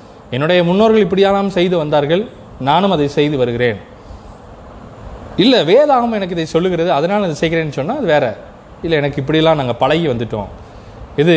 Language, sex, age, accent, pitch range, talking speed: Tamil, male, 20-39, native, 140-195 Hz, 130 wpm